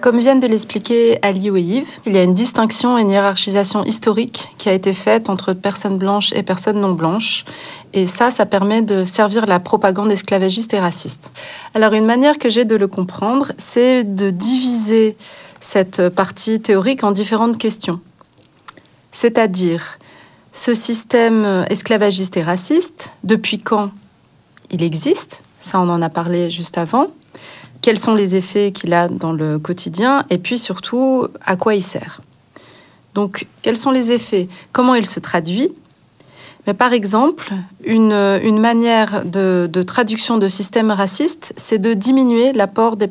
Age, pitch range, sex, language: 30-49, 190-235 Hz, female, French